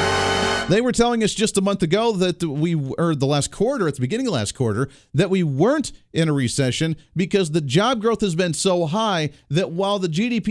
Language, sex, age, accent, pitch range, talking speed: English, male, 40-59, American, 125-175 Hz, 215 wpm